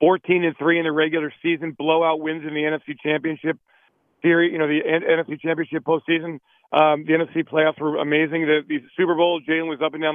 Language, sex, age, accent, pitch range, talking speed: English, male, 40-59, American, 150-175 Hz, 200 wpm